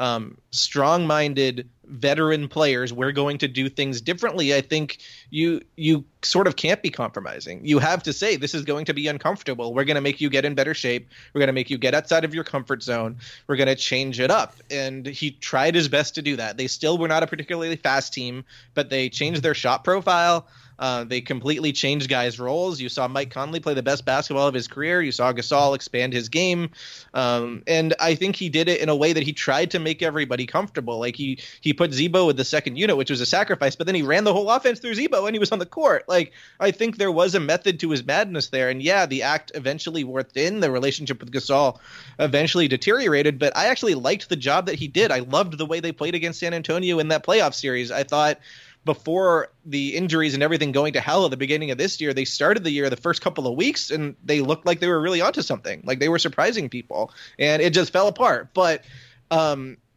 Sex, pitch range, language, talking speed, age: male, 130-165 Hz, English, 235 wpm, 20-39